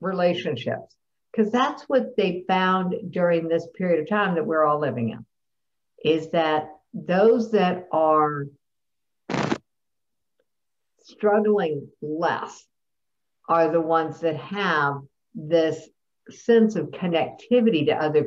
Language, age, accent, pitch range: English, 60-79, American, 150-195 Hz